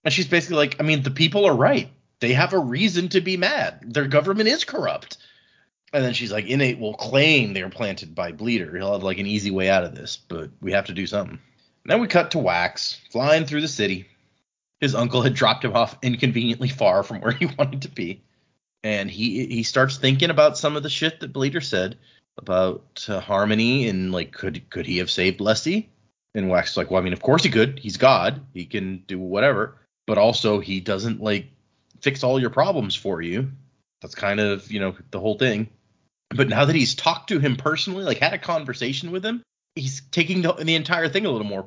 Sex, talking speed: male, 225 wpm